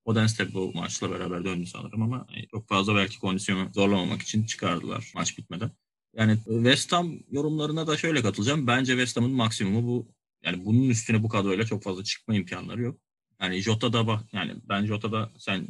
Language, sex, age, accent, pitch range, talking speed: Turkish, male, 30-49, native, 105-125 Hz, 175 wpm